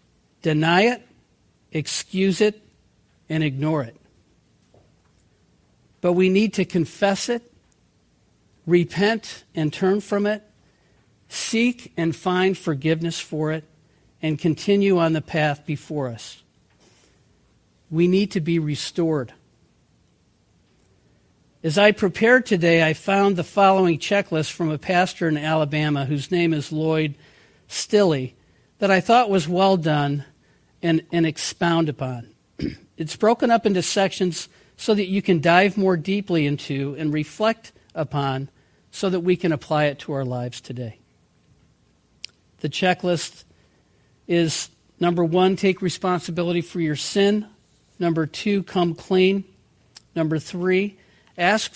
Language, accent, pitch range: English, American, 155-190 Hz